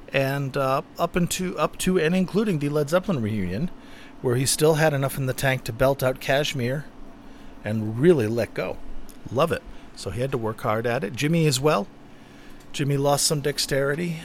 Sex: male